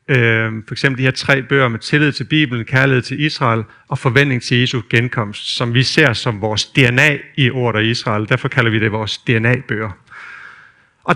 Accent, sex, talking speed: native, male, 175 wpm